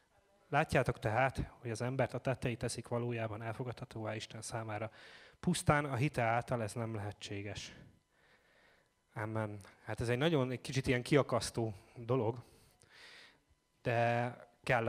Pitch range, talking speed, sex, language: 115-135 Hz, 125 wpm, male, Hungarian